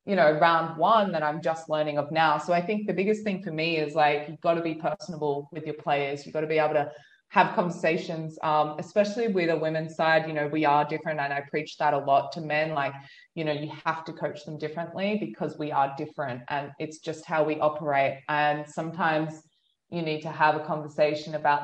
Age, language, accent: 20-39, English, Australian